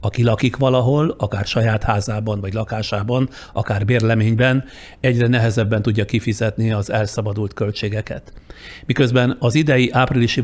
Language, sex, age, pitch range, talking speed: Hungarian, male, 60-79, 105-120 Hz, 120 wpm